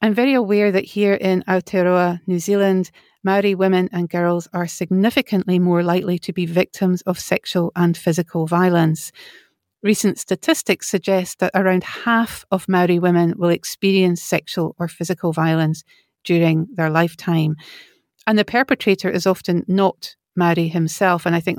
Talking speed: 150 wpm